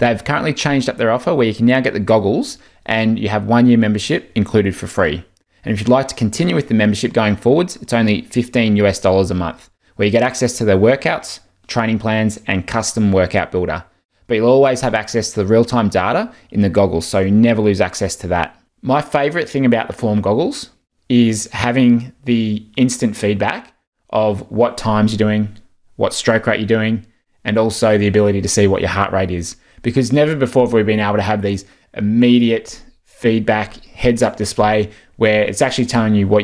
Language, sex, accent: English, male, Australian